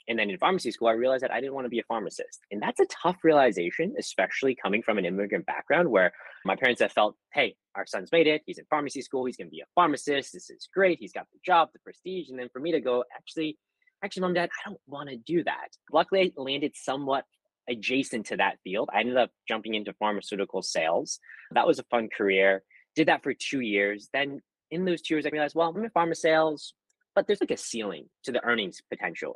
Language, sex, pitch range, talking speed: English, male, 115-170 Hz, 240 wpm